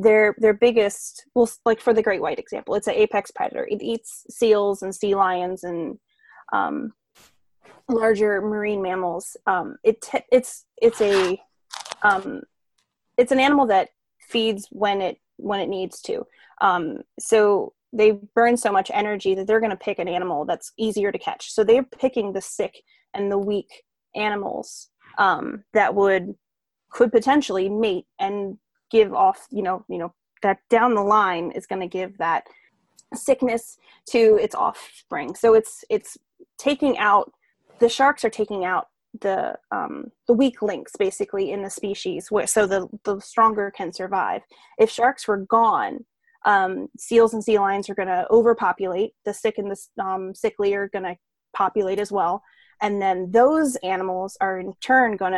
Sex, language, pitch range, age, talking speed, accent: female, English, 195-250 Hz, 20-39, 165 wpm, American